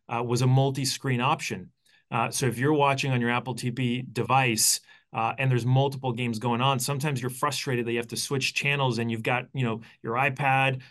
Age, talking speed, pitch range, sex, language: 30-49, 210 wpm, 115-135 Hz, male, English